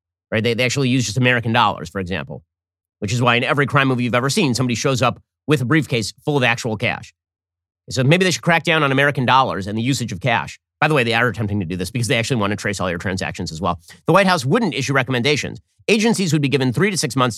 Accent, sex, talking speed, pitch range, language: American, male, 270 wpm, 105-150 Hz, English